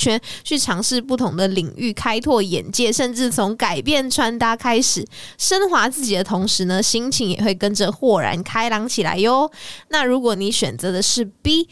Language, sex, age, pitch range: Chinese, female, 20-39, 200-260 Hz